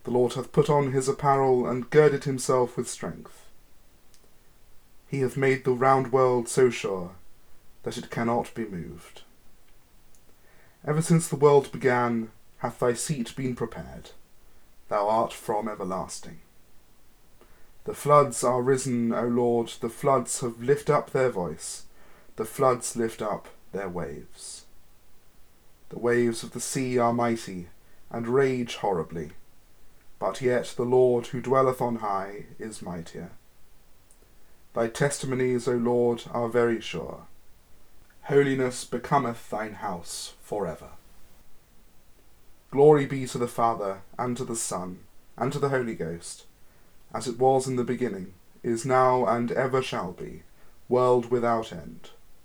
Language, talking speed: English, 135 wpm